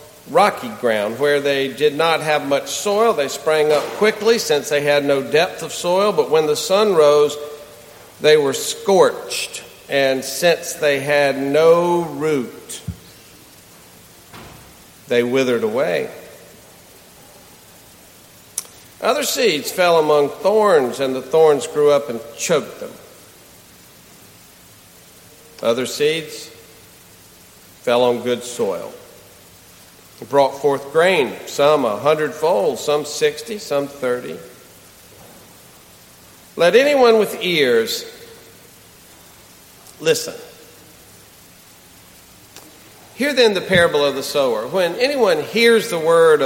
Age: 50-69